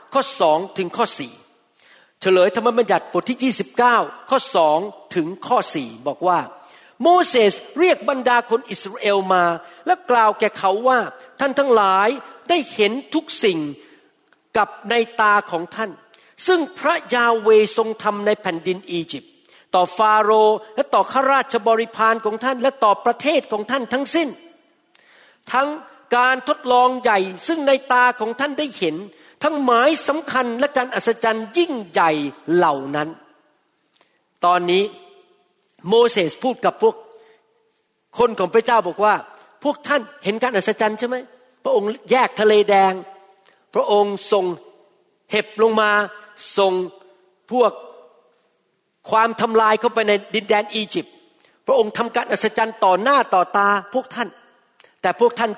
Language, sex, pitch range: Thai, male, 200-265 Hz